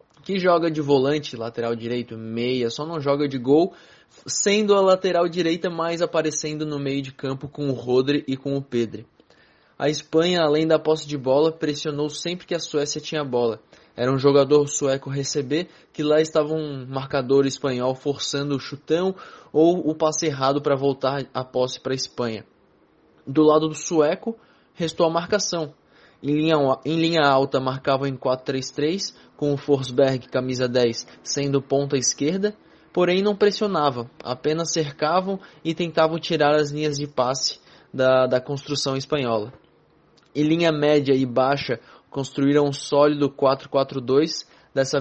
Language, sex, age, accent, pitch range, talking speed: Portuguese, male, 20-39, Brazilian, 135-155 Hz, 155 wpm